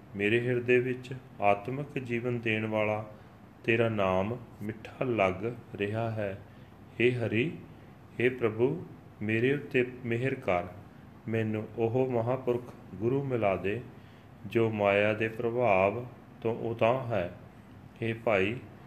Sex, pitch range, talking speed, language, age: male, 105-125 Hz, 115 wpm, Punjabi, 40-59